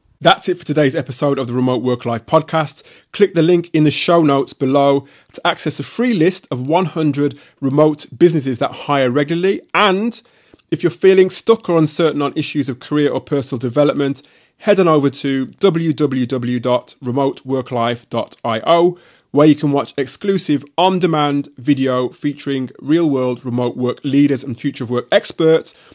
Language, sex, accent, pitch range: English, male, British, 135-165 Hz